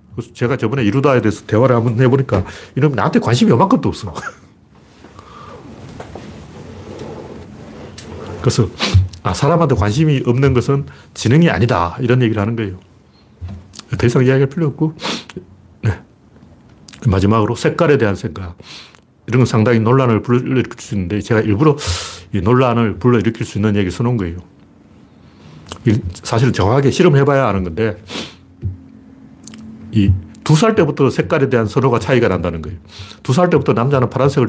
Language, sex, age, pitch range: Korean, male, 40-59, 100-145 Hz